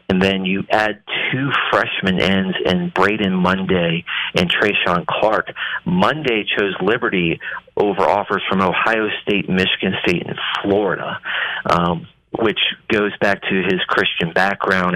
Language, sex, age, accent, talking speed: English, male, 40-59, American, 130 wpm